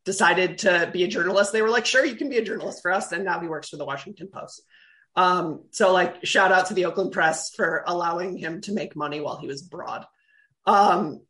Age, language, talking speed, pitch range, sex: 30-49, English, 235 wpm, 165-215 Hz, male